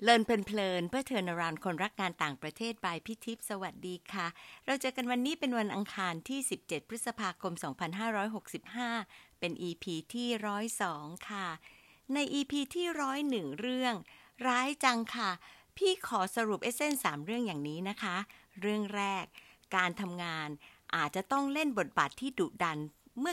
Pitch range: 175-245 Hz